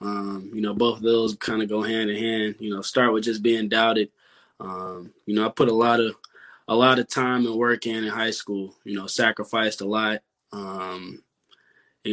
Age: 20-39